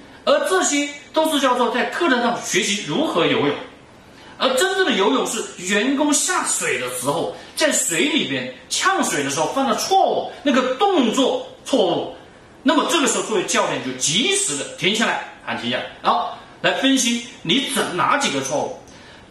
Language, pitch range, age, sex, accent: Chinese, 220-310 Hz, 30-49, male, native